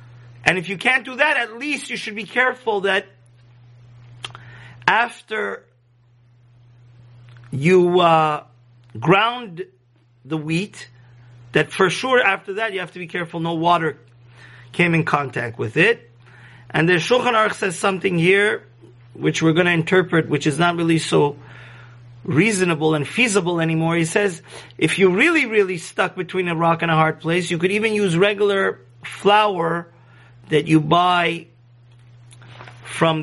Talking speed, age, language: 145 wpm, 40-59, English